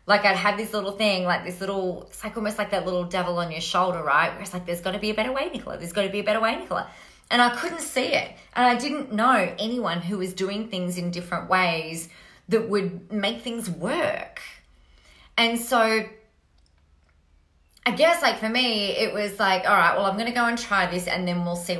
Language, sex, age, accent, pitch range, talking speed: English, female, 30-49, Australian, 175-220 Hz, 235 wpm